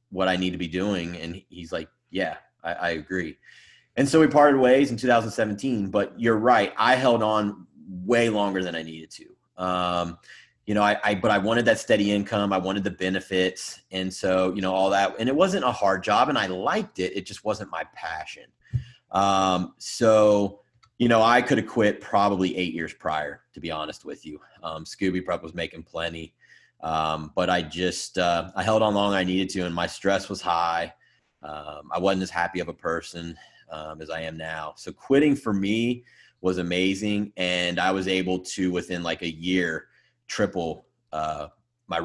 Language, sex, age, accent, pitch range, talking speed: English, male, 30-49, American, 85-100 Hz, 200 wpm